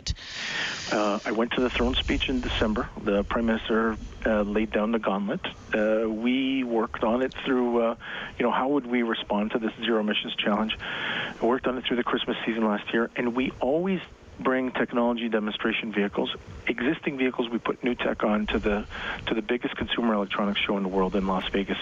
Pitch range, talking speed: 105-120 Hz, 200 wpm